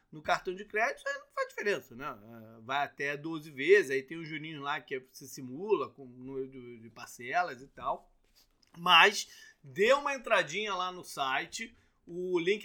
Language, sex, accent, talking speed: Portuguese, male, Brazilian, 175 wpm